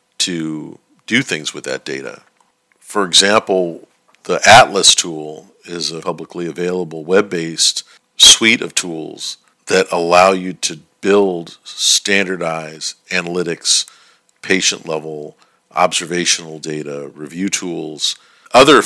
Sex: male